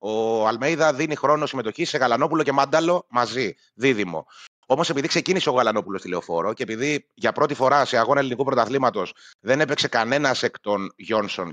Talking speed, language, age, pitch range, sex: 165 wpm, Greek, 30-49, 105-135 Hz, male